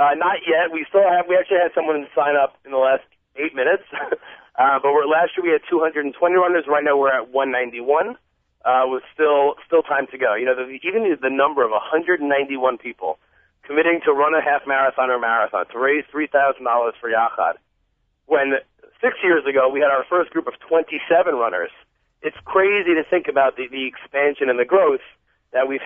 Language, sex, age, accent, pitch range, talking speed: English, male, 30-49, American, 130-170 Hz, 195 wpm